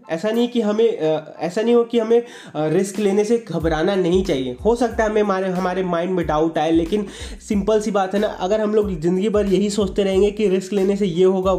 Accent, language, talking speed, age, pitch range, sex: native, Hindi, 240 wpm, 20-39, 160-195 Hz, male